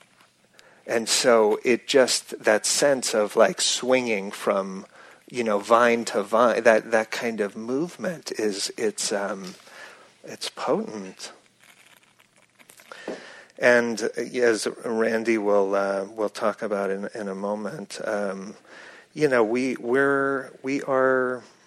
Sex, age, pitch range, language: male, 40-59, 105-130 Hz, English